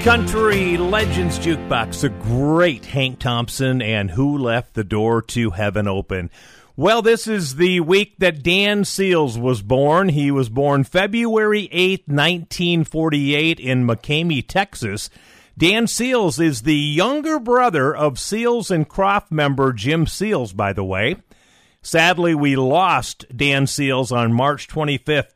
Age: 50-69